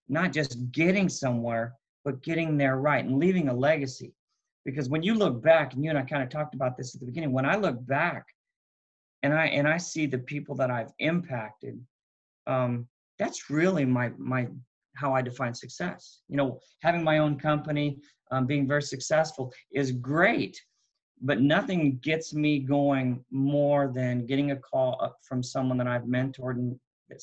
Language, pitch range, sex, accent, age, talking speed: English, 125-145 Hz, male, American, 40-59, 180 wpm